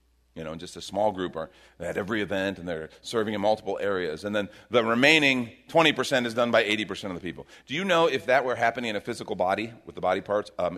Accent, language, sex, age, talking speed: American, English, male, 40-59, 255 wpm